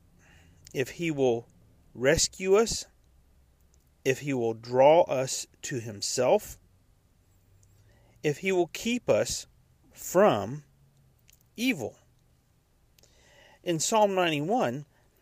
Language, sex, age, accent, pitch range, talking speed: English, male, 40-59, American, 115-165 Hz, 85 wpm